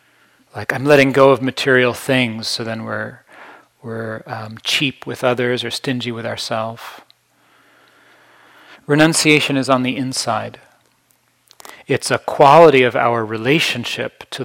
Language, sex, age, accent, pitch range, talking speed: English, male, 40-59, American, 115-135 Hz, 130 wpm